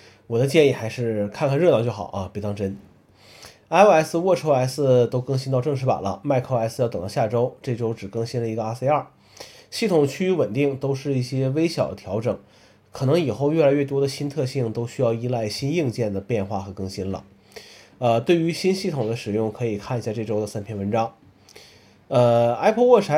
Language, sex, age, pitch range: Chinese, male, 30-49, 110-145 Hz